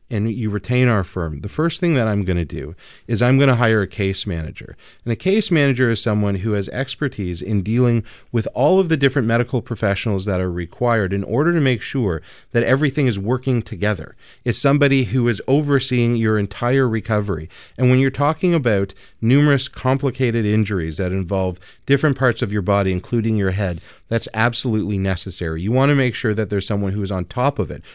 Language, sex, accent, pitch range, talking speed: English, male, American, 95-125 Hz, 205 wpm